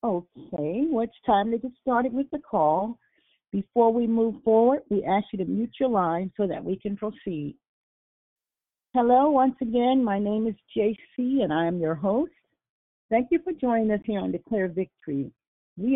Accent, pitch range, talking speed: American, 195-250 Hz, 185 wpm